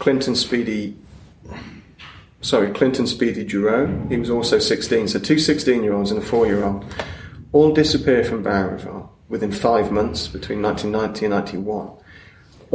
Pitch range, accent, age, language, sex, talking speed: 100-125 Hz, British, 30-49, English, male, 125 wpm